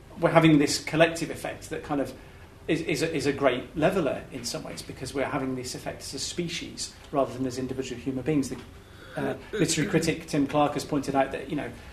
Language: English